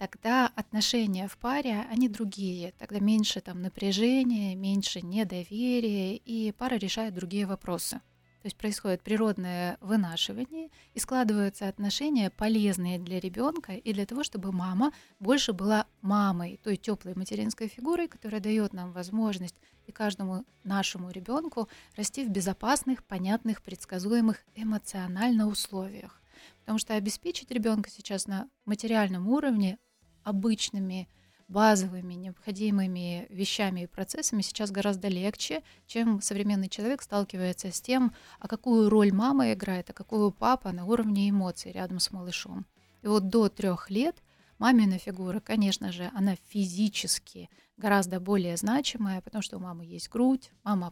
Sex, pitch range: female, 190-225 Hz